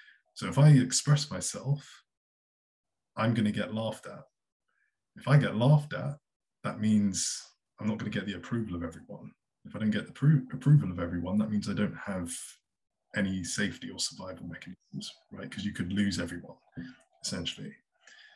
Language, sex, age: English, male, 20-39